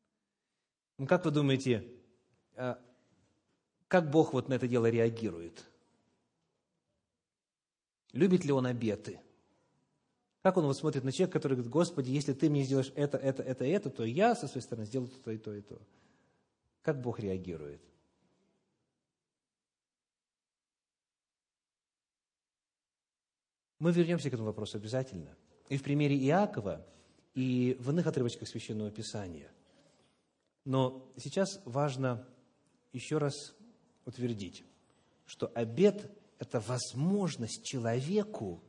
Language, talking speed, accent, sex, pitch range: Russian, 110 wpm, native, male, 125-190 Hz